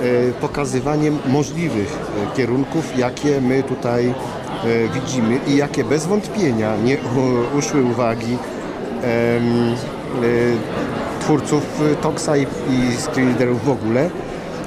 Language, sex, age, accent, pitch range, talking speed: Polish, male, 50-69, native, 115-140 Hz, 80 wpm